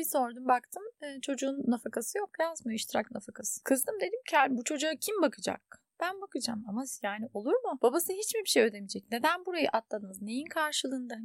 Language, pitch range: Turkish, 215-280 Hz